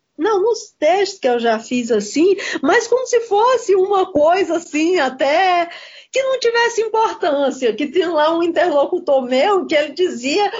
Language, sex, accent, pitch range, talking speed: Portuguese, female, Brazilian, 275-395 Hz, 165 wpm